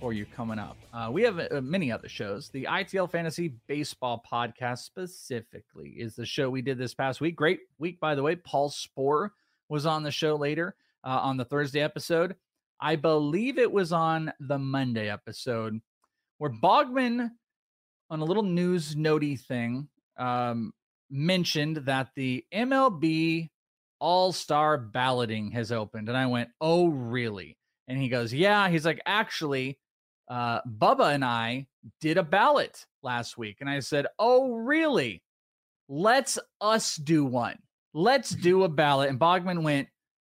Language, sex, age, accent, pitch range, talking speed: English, male, 30-49, American, 125-170 Hz, 155 wpm